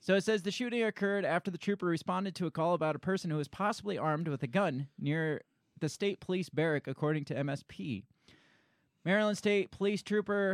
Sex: male